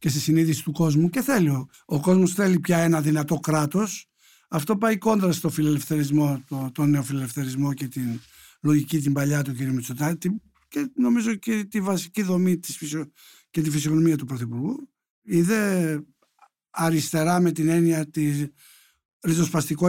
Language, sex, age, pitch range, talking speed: Greek, male, 60-79, 150-195 Hz, 140 wpm